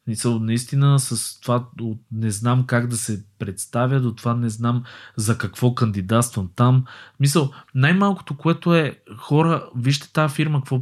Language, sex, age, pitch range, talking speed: Bulgarian, male, 20-39, 105-135 Hz, 155 wpm